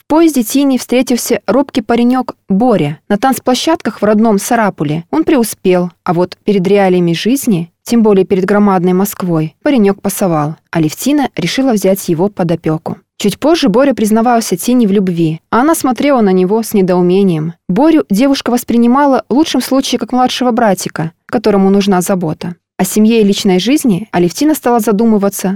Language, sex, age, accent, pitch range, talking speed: Russian, female, 20-39, native, 190-255 Hz, 155 wpm